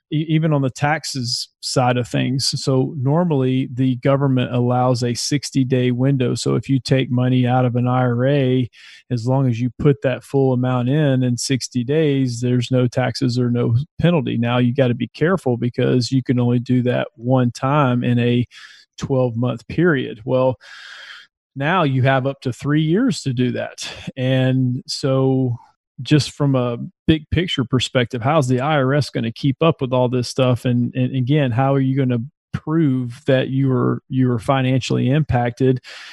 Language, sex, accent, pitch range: English, male, American, 125-145 Hz